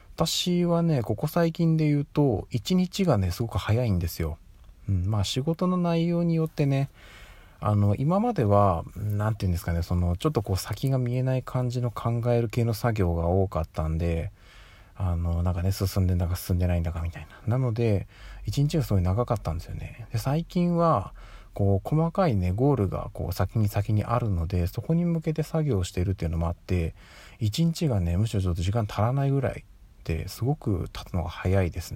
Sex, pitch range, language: male, 90-130 Hz, Japanese